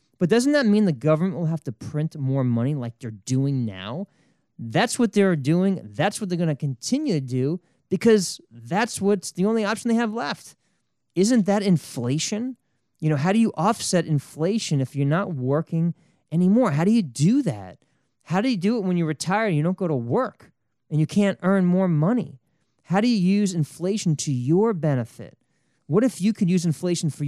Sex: male